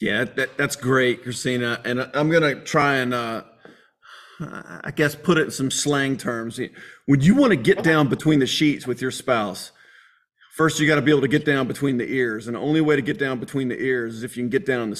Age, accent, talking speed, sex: 40-59, American, 240 wpm, male